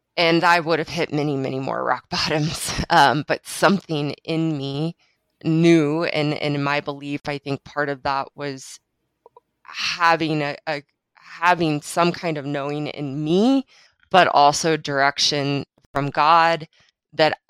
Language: English